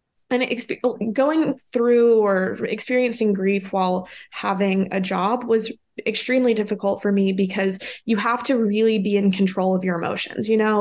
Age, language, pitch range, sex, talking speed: 20-39, English, 190-225 Hz, female, 155 wpm